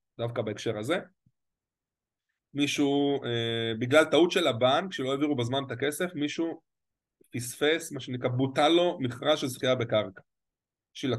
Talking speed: 135 wpm